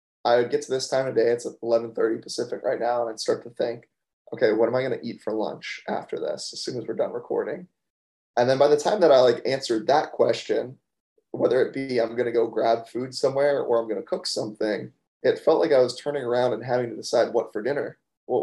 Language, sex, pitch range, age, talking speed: English, male, 115-150 Hz, 20-39, 255 wpm